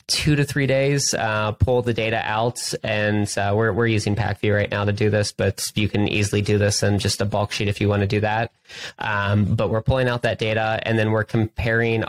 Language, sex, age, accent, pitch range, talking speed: English, male, 20-39, American, 105-115 Hz, 240 wpm